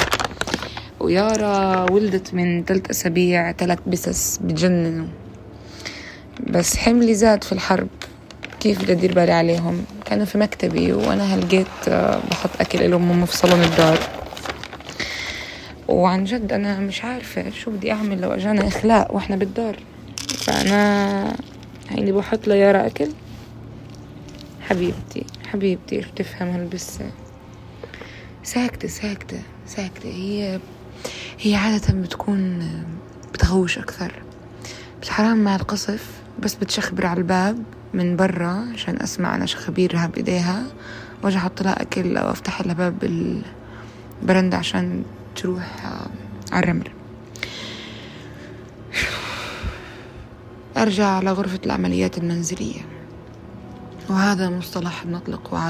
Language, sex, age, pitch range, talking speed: Arabic, female, 20-39, 165-200 Hz, 100 wpm